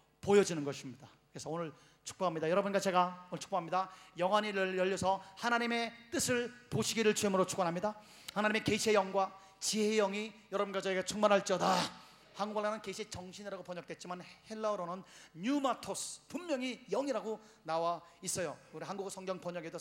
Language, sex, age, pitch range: Korean, male, 40-59, 180-230 Hz